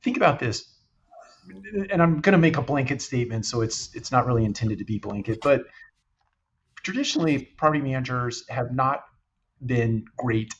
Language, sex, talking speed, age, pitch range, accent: English, male, 155 wpm, 40-59, 110-135 Hz, American